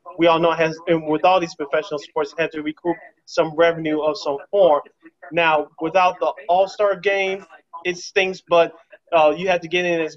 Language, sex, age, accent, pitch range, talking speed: English, male, 20-39, American, 155-185 Hz, 205 wpm